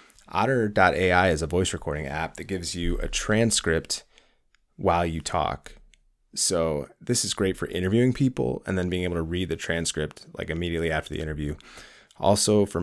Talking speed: 170 wpm